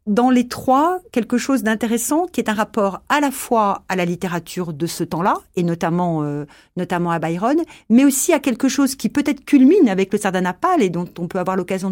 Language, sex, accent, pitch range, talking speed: French, female, French, 175-245 Hz, 210 wpm